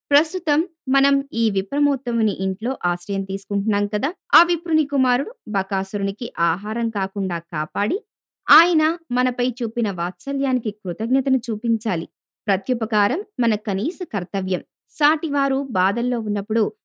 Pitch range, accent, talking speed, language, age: 205-275 Hz, native, 100 wpm, Telugu, 20-39